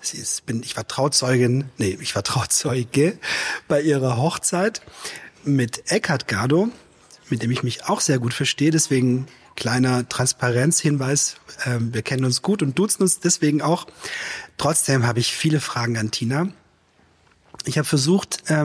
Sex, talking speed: male, 150 wpm